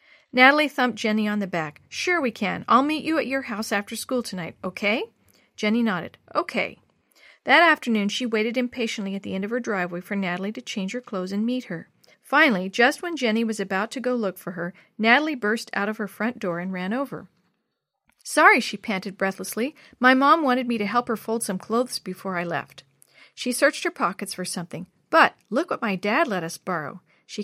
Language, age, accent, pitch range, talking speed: English, 40-59, American, 190-250 Hz, 210 wpm